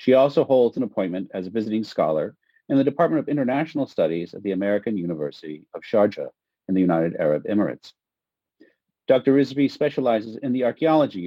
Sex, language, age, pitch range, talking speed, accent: male, English, 40-59, 105-145 Hz, 170 wpm, American